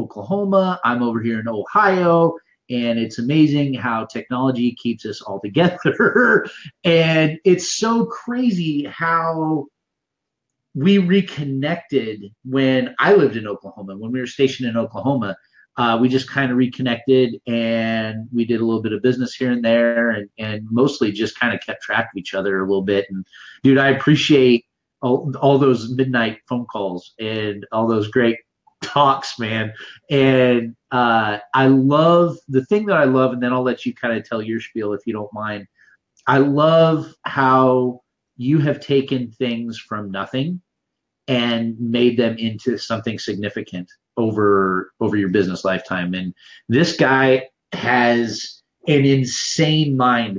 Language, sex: English, male